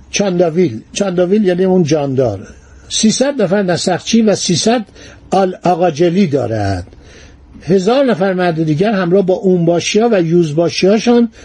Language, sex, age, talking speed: Persian, male, 50-69, 125 wpm